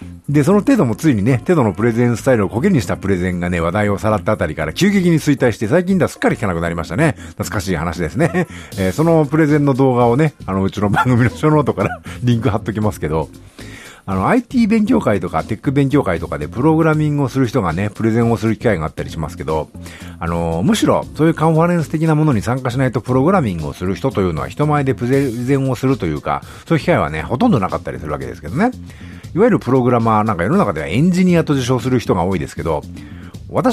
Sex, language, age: male, Japanese, 50-69